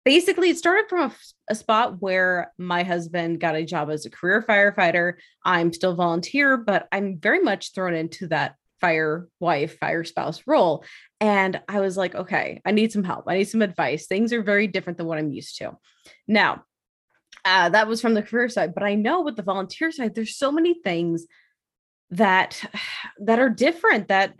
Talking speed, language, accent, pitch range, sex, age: 190 wpm, English, American, 170-220 Hz, female, 20-39